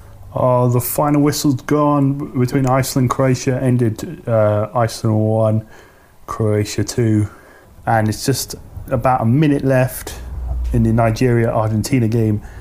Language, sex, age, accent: English, male, 30-49, British